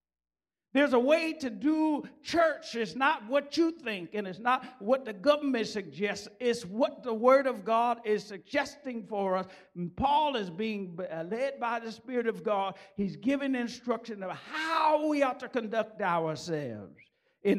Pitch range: 150-225 Hz